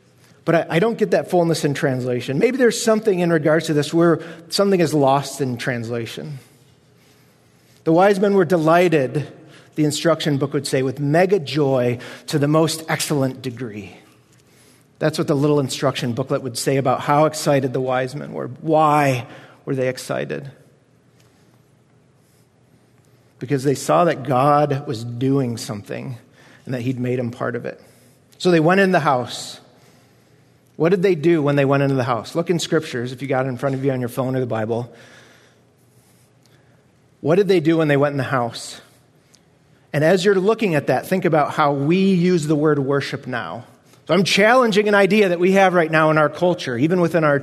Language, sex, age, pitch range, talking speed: English, male, 40-59, 130-165 Hz, 185 wpm